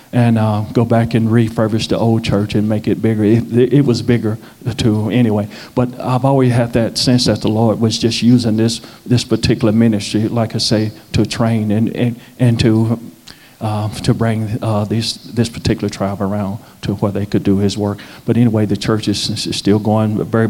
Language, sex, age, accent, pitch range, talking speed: English, male, 40-59, American, 110-125 Hz, 200 wpm